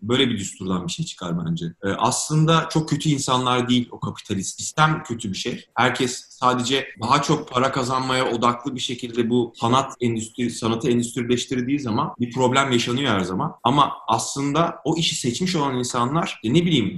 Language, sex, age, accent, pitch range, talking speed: Turkish, male, 30-49, native, 115-150 Hz, 170 wpm